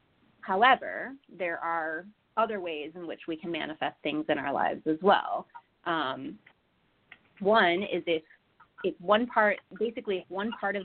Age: 30-49